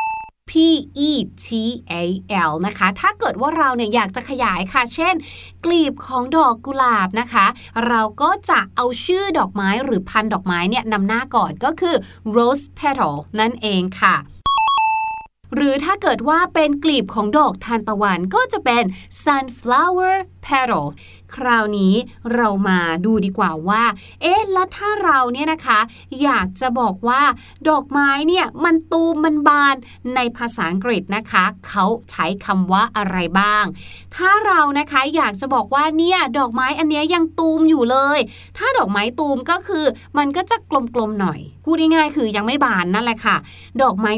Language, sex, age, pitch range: Thai, female, 30-49, 215-305 Hz